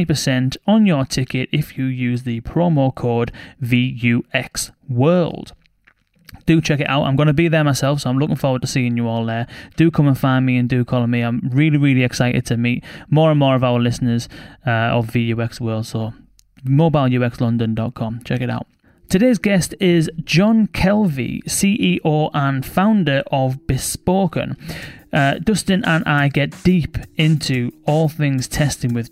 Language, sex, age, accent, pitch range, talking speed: English, male, 20-39, British, 125-160 Hz, 165 wpm